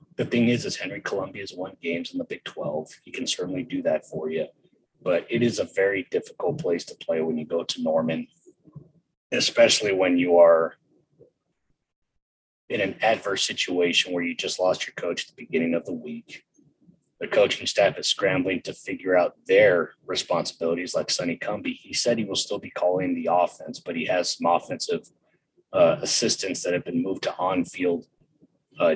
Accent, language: American, English